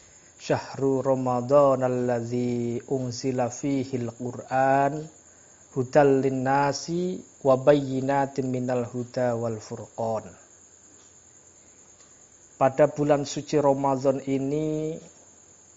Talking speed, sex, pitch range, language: 60 wpm, male, 115-150 Hz, Indonesian